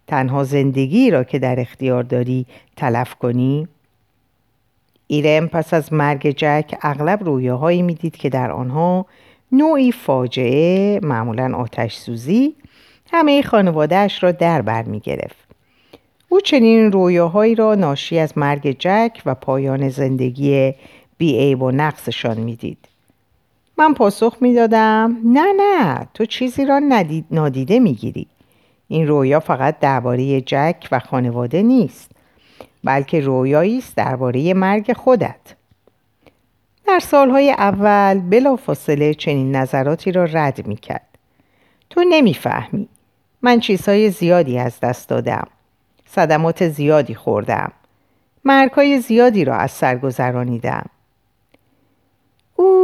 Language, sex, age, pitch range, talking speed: Persian, female, 50-69, 130-215 Hz, 115 wpm